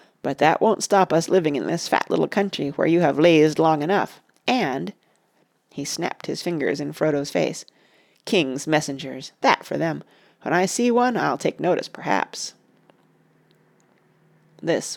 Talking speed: 155 wpm